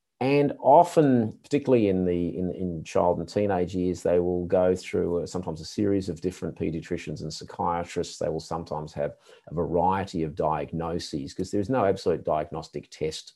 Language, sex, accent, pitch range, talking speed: English, male, Australian, 85-105 Hz, 170 wpm